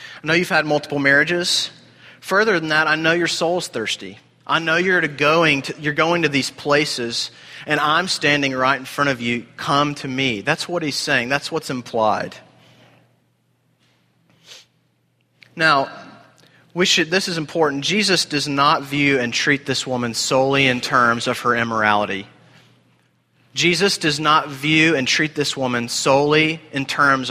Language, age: English, 30-49